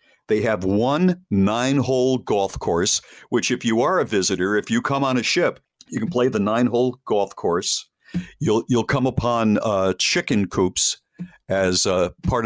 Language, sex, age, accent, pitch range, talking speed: English, male, 50-69, American, 95-135 Hz, 170 wpm